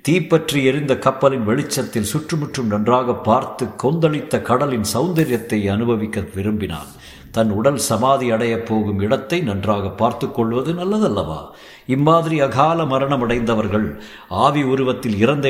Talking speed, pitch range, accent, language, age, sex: 110 wpm, 105-130 Hz, native, Tamil, 50-69, male